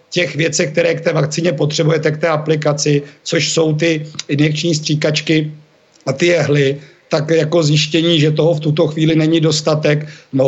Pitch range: 150-160 Hz